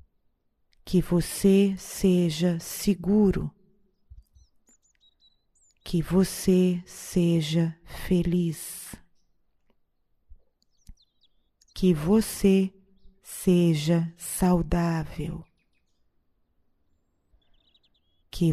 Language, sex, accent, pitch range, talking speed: Portuguese, female, Brazilian, 165-190 Hz, 40 wpm